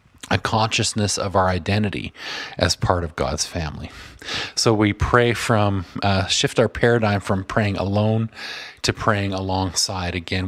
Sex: male